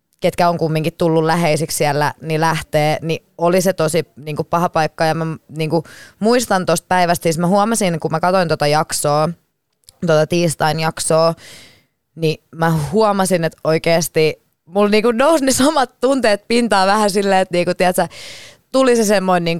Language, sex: Finnish, female